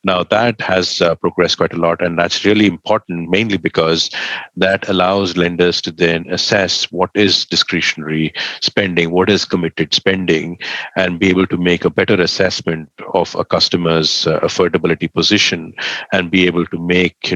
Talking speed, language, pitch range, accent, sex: 165 wpm, English, 85-95 Hz, Indian, male